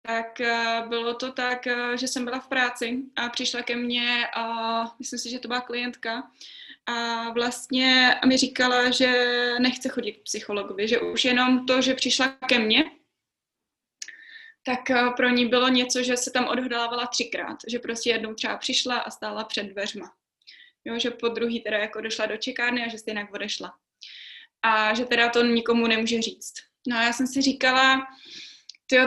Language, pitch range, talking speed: Slovak, 230-260 Hz, 170 wpm